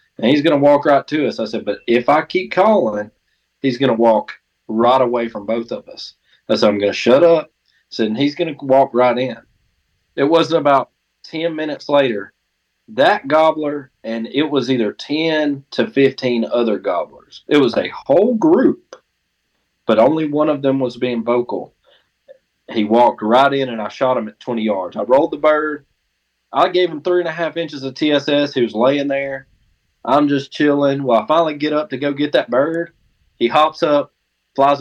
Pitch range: 115-150 Hz